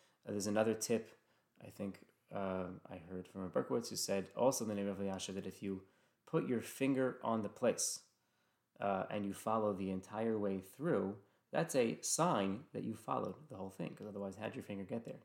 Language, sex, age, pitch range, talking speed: English, male, 20-39, 100-115 Hz, 210 wpm